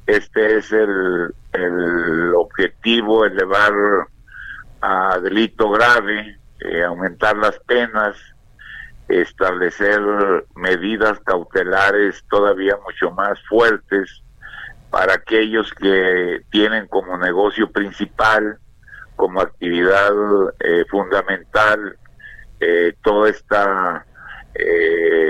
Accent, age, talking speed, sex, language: Mexican, 50-69, 85 wpm, male, Spanish